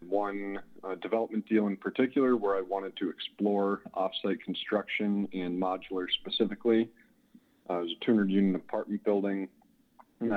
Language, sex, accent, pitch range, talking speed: English, male, American, 95-105 Hz, 140 wpm